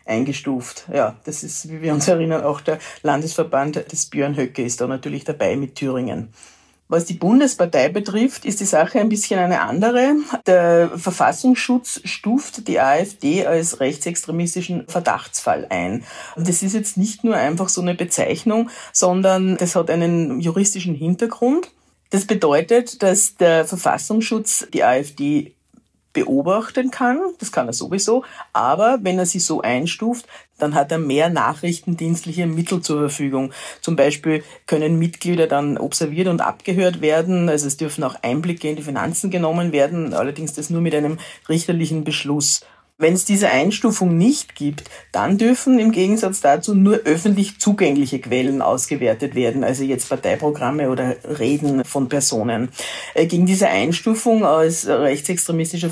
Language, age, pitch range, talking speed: German, 50-69, 150-200 Hz, 145 wpm